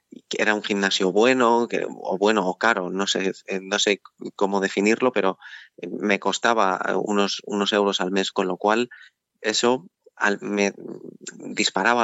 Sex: male